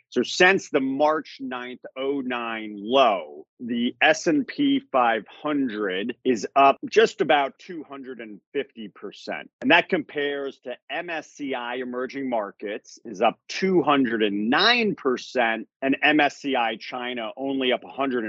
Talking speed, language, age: 100 wpm, English, 40-59